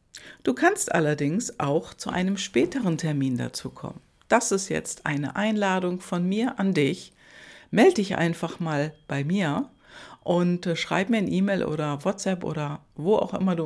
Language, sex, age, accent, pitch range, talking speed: German, female, 60-79, German, 155-195 Hz, 165 wpm